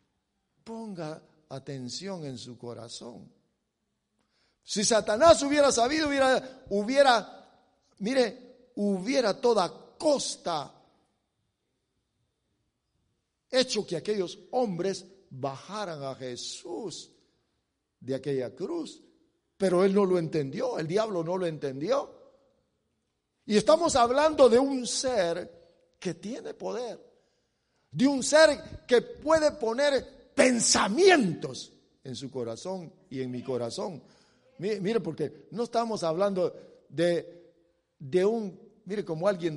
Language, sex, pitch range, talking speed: English, male, 170-255 Hz, 105 wpm